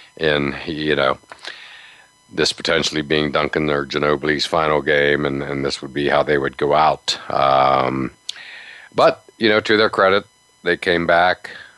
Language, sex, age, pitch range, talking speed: English, male, 50-69, 70-80 Hz, 160 wpm